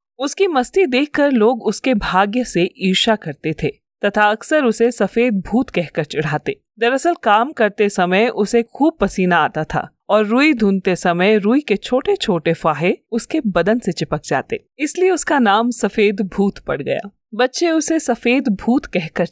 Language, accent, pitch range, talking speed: Hindi, native, 185-260 Hz, 160 wpm